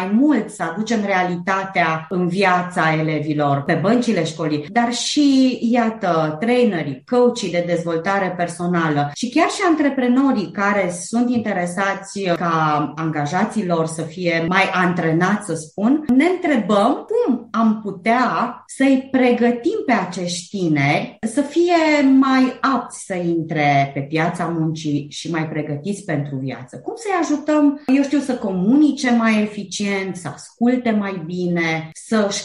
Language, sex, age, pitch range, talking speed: Romanian, female, 30-49, 160-235 Hz, 135 wpm